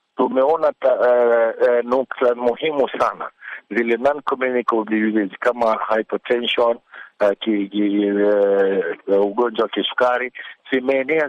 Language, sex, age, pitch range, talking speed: Swahili, male, 50-69, 115-130 Hz, 95 wpm